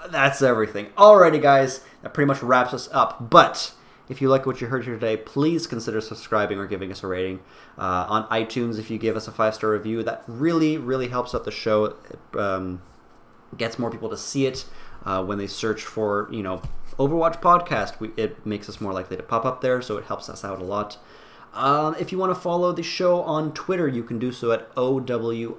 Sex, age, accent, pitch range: male, 20-39, American, 105-140 Hz